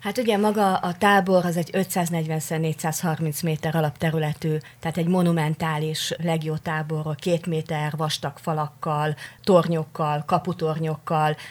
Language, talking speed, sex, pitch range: Hungarian, 110 wpm, female, 155-185 Hz